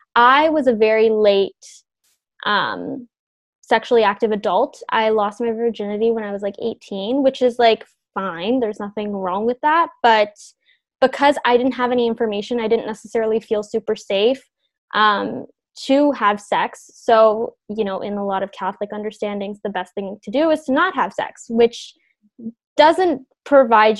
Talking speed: 165 wpm